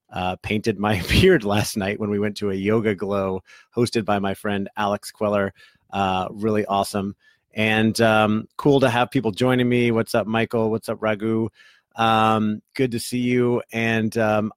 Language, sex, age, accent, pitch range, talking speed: English, male, 30-49, American, 100-115 Hz, 175 wpm